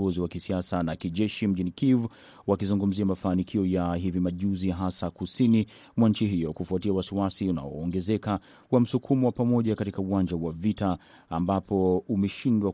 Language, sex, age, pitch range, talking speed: Swahili, male, 30-49, 90-110 Hz, 130 wpm